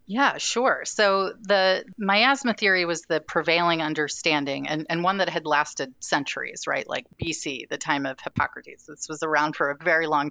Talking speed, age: 180 wpm, 30-49